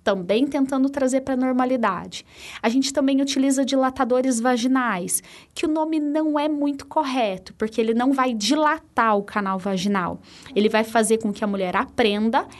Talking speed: 165 wpm